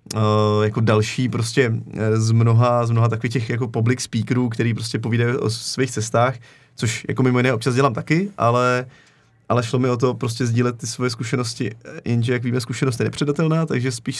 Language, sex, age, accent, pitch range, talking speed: Czech, male, 30-49, native, 115-135 Hz, 185 wpm